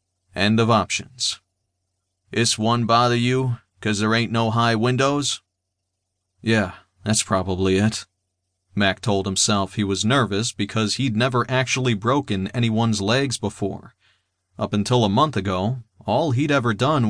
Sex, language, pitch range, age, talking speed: male, English, 95-125 Hz, 40-59, 140 wpm